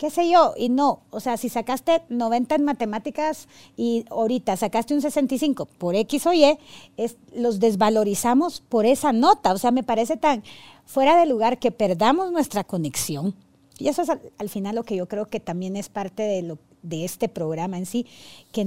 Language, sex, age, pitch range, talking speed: Spanish, female, 40-59, 215-275 Hz, 195 wpm